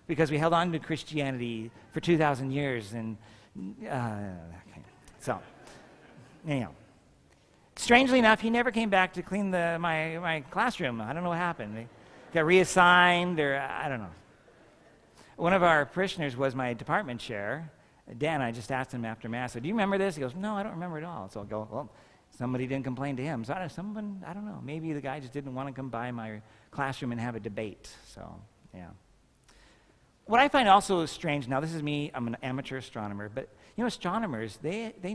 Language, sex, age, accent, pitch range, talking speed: English, male, 50-69, American, 120-170 Hz, 200 wpm